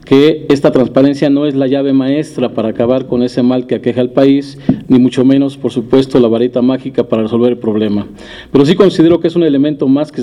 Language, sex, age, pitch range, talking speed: Spanish, male, 50-69, 125-150 Hz, 225 wpm